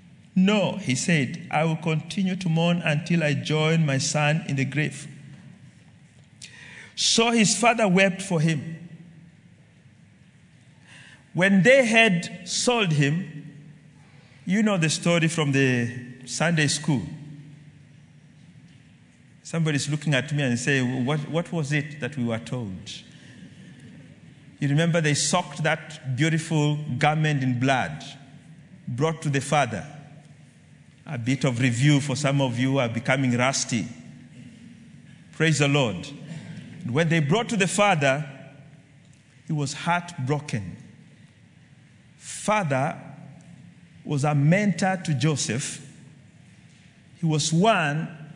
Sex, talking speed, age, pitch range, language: male, 120 wpm, 50-69, 145-170 Hz, English